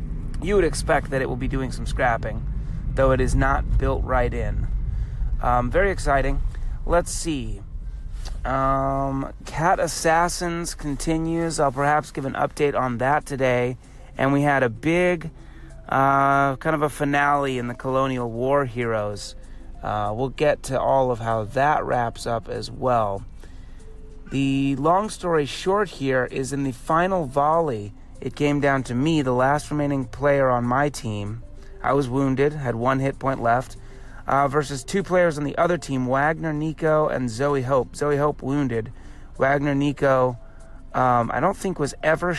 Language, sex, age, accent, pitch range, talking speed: English, male, 30-49, American, 120-150 Hz, 165 wpm